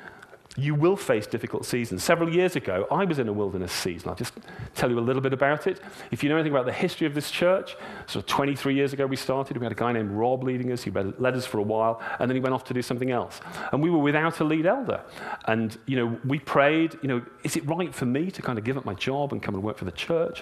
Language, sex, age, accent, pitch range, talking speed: English, male, 40-59, British, 115-165 Hz, 280 wpm